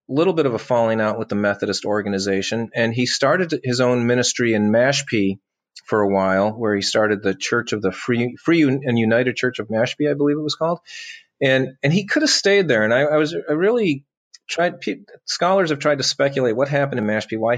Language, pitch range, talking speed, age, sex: English, 115-150 Hz, 220 wpm, 30-49, male